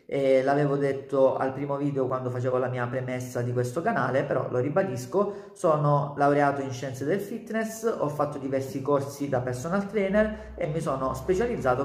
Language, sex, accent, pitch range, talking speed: Italian, male, native, 130-165 Hz, 170 wpm